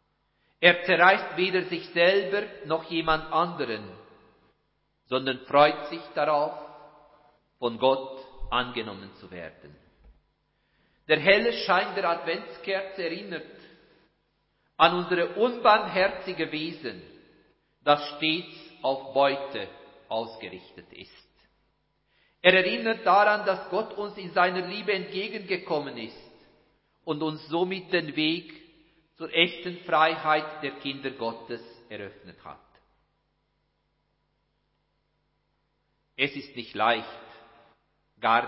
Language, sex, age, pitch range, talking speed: German, male, 50-69, 135-180 Hz, 95 wpm